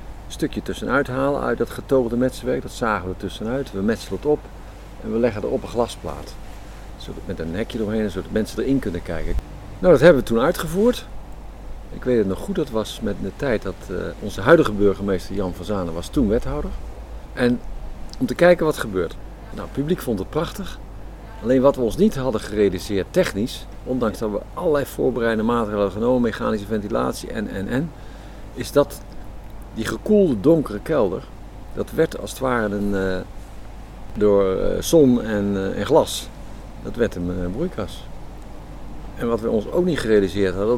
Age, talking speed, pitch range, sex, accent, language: 50-69, 180 wpm, 95-130 Hz, male, Dutch, Dutch